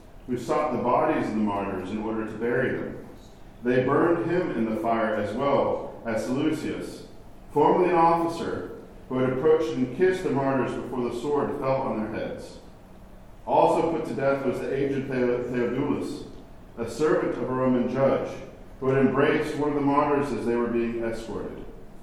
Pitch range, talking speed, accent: 110-135 Hz, 175 wpm, American